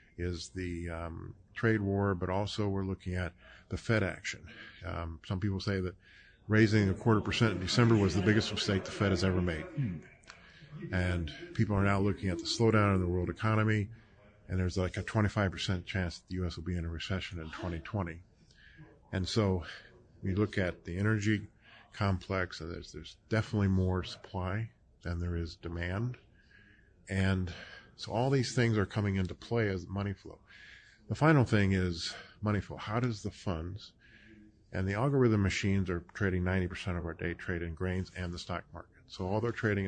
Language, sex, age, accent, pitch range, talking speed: English, male, 40-59, American, 90-105 Hz, 185 wpm